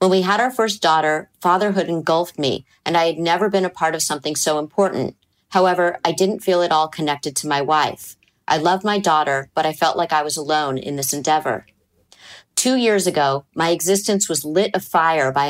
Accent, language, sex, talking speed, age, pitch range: American, English, female, 210 wpm, 40-59, 150-185 Hz